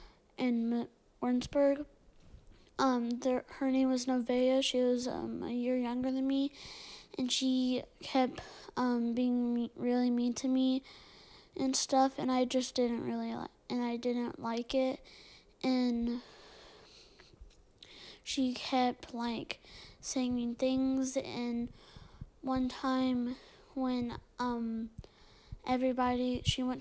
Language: English